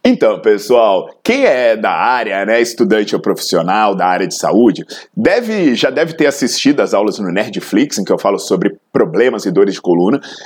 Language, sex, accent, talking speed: Portuguese, male, Brazilian, 190 wpm